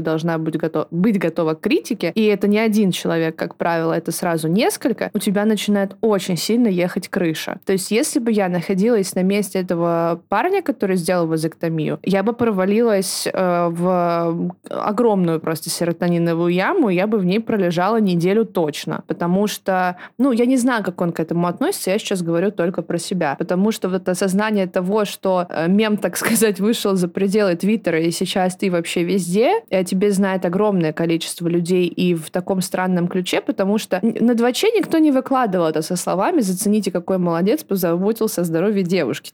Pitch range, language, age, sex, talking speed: 175-220 Hz, Russian, 20-39, female, 180 wpm